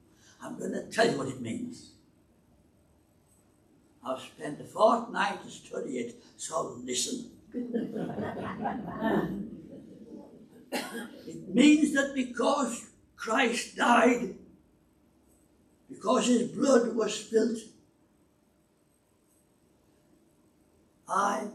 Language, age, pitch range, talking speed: English, 60-79, 180-290 Hz, 80 wpm